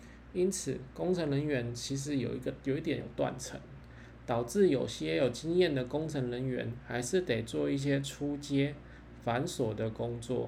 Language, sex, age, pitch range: Chinese, male, 20-39, 120-145 Hz